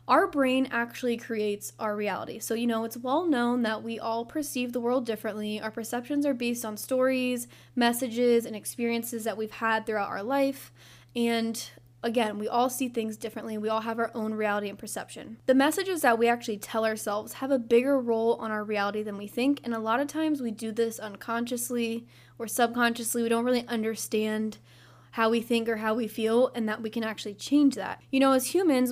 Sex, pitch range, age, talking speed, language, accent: female, 220-250 Hz, 10-29, 205 wpm, English, American